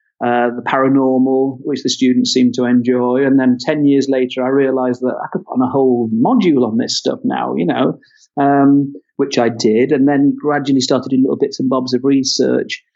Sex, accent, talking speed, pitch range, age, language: male, British, 210 wpm, 130-195 Hz, 40-59, English